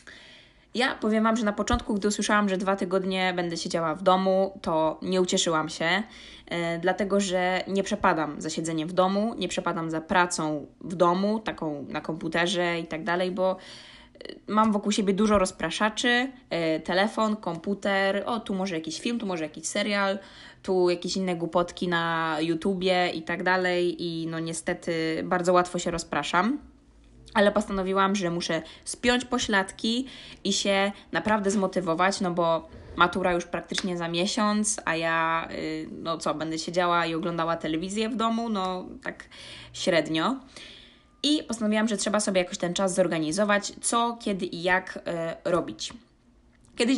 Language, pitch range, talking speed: Polish, 170-205 Hz, 150 wpm